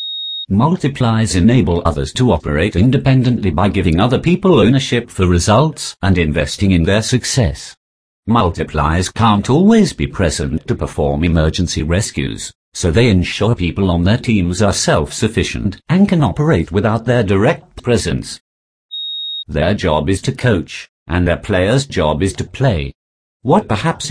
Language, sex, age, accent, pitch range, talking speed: English, male, 50-69, British, 85-130 Hz, 140 wpm